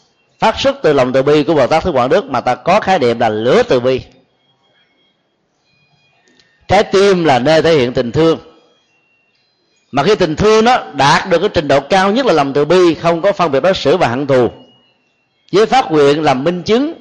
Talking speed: 210 wpm